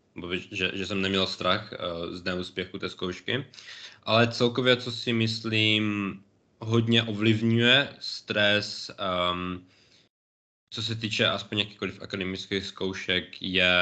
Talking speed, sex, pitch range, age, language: 115 wpm, male, 100-115 Hz, 20-39, Czech